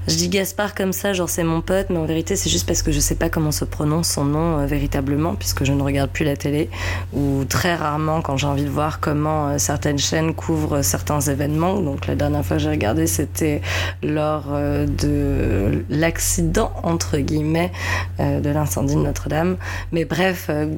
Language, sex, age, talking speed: French, female, 20-39, 205 wpm